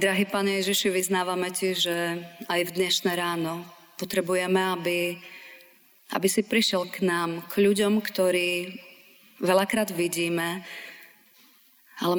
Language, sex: Slovak, female